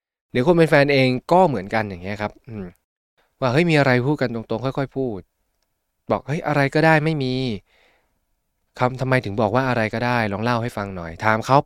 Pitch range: 105-140 Hz